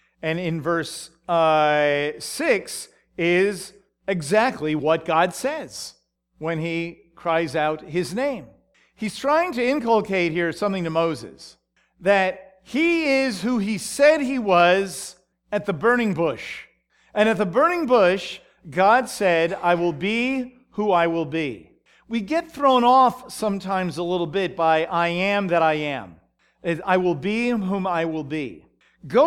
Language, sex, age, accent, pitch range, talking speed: English, male, 50-69, American, 165-225 Hz, 150 wpm